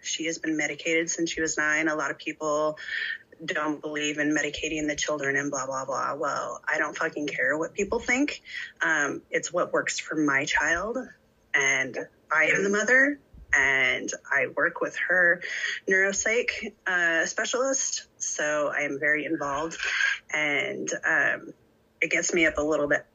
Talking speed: 165 wpm